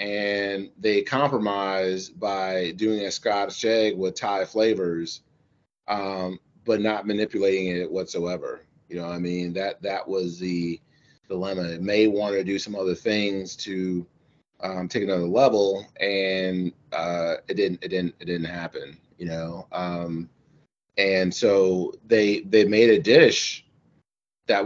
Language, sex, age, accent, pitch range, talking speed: English, male, 30-49, American, 90-110 Hz, 145 wpm